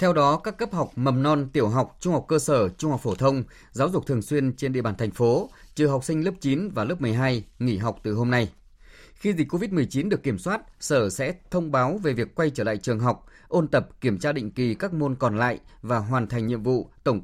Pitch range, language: 120-150 Hz, Vietnamese